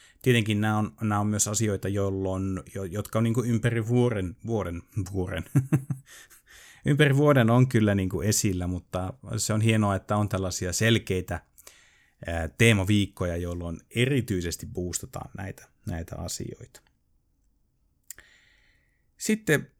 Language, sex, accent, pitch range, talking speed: Finnish, male, native, 95-120 Hz, 125 wpm